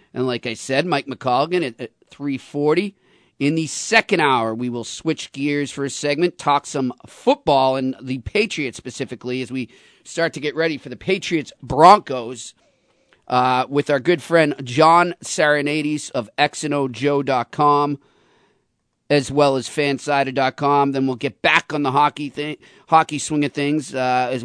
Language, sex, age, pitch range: English, male, 40-59, 130-165 Hz